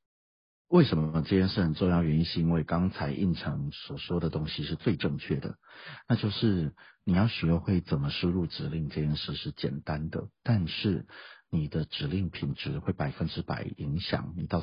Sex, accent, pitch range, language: male, native, 75-95 Hz, Chinese